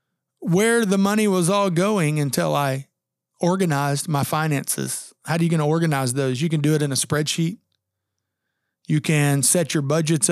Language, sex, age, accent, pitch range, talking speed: English, male, 40-59, American, 145-175 Hz, 175 wpm